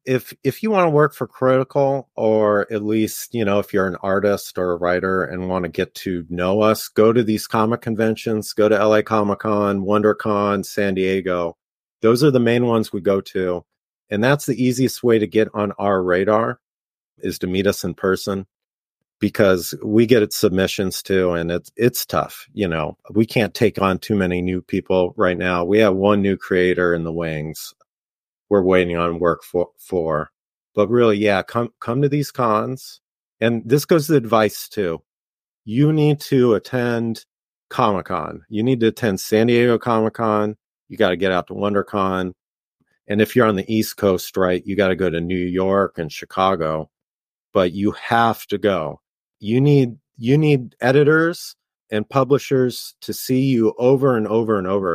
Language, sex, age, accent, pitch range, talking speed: English, male, 40-59, American, 95-120 Hz, 185 wpm